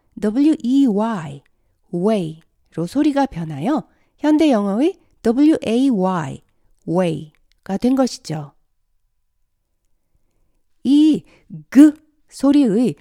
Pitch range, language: 170-280 Hz, Korean